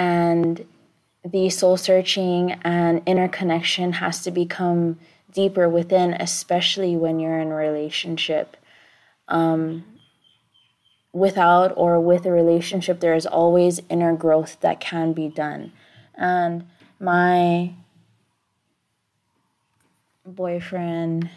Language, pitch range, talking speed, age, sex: English, 165-185 Hz, 100 wpm, 20-39, female